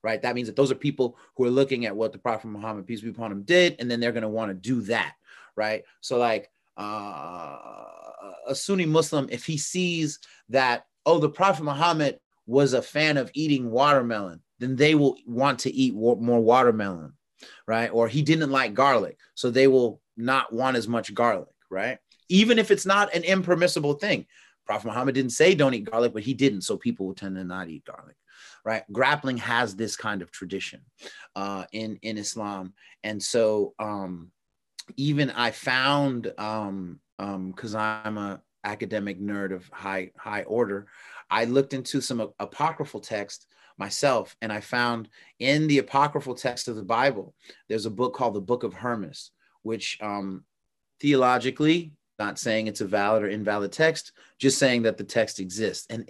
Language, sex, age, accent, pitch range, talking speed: English, male, 30-49, American, 105-140 Hz, 180 wpm